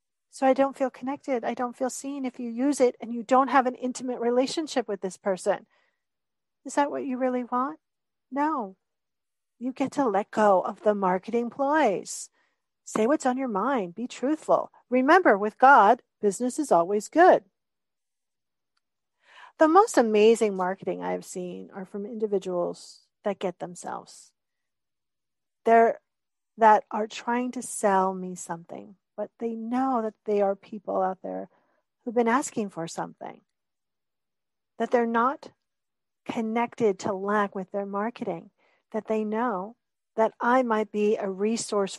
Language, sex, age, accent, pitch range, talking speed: English, female, 40-59, American, 190-255 Hz, 150 wpm